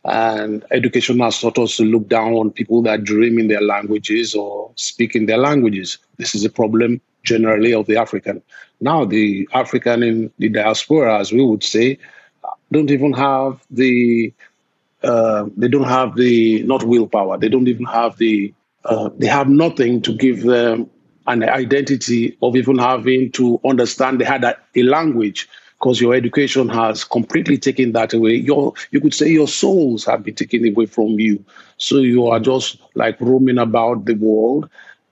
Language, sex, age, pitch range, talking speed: English, male, 50-69, 115-130 Hz, 175 wpm